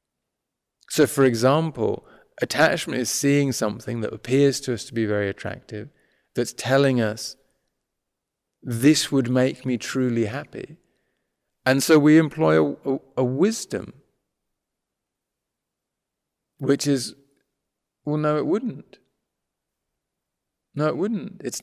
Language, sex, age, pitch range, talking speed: English, male, 40-59, 125-160 Hz, 115 wpm